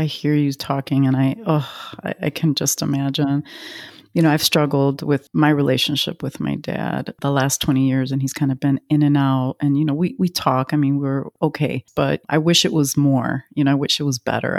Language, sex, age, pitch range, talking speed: English, female, 30-49, 130-150 Hz, 235 wpm